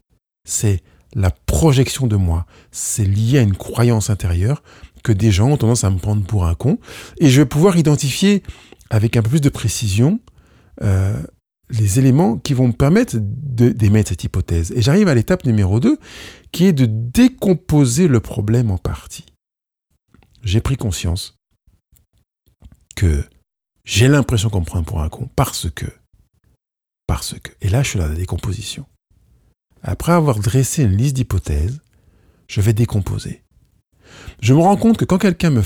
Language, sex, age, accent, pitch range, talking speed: French, male, 50-69, French, 95-130 Hz, 160 wpm